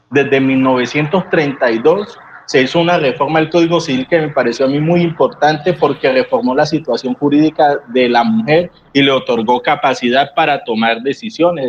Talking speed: 160 wpm